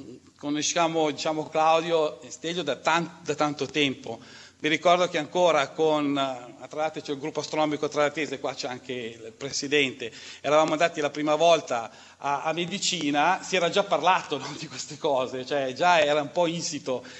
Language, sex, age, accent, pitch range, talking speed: Italian, male, 40-59, native, 145-185 Hz, 170 wpm